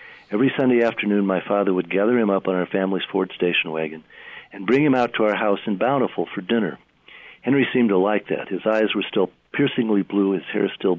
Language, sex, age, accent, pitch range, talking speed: English, male, 60-79, American, 95-115 Hz, 220 wpm